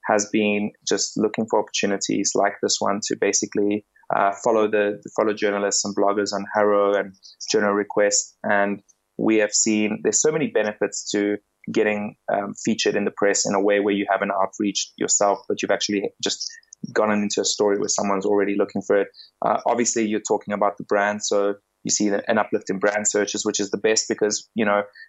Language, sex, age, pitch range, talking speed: English, male, 20-39, 100-110 Hz, 200 wpm